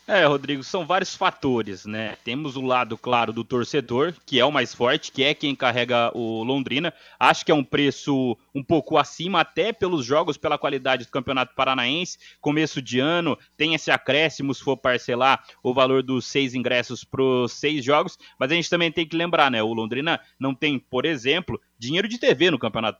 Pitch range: 130-155 Hz